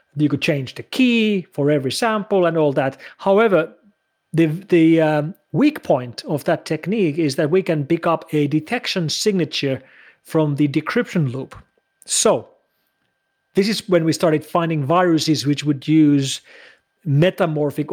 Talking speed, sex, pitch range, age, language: 150 wpm, male, 145-185 Hz, 40-59, English